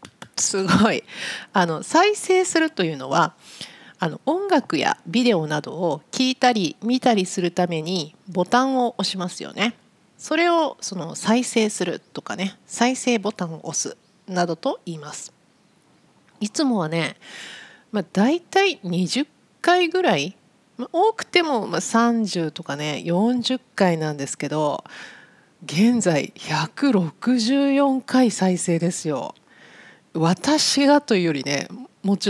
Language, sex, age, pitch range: Japanese, female, 40-59, 170-255 Hz